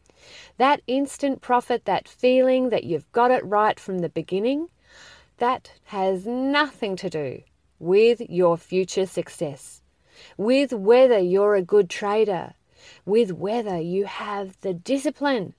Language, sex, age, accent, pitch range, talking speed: English, female, 40-59, Australian, 195-260 Hz, 130 wpm